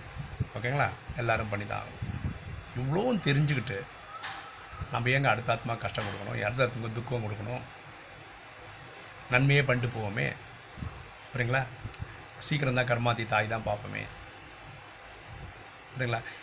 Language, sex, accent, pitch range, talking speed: Tamil, male, native, 110-135 Hz, 90 wpm